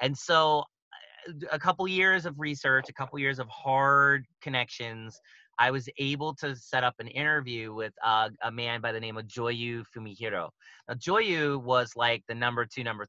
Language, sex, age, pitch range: English, male, 30-49, 115-150 Hz